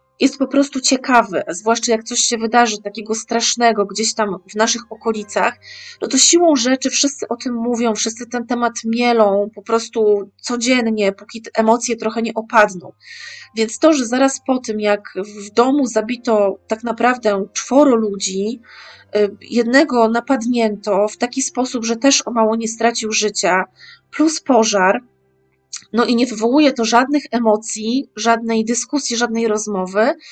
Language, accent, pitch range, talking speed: Polish, native, 215-265 Hz, 150 wpm